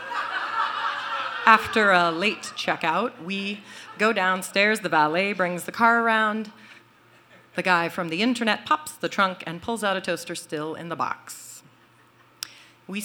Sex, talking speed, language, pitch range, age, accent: female, 145 wpm, English, 175-235 Hz, 40-59, American